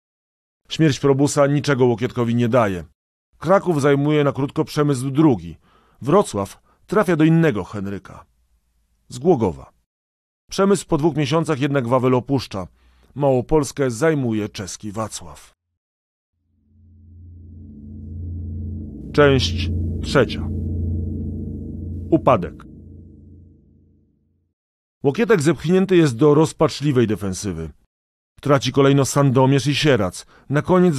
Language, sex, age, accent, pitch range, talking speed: Polish, male, 40-59, native, 90-145 Hz, 85 wpm